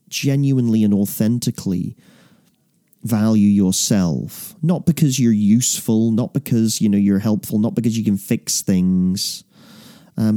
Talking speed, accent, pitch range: 125 wpm, British, 105-145 Hz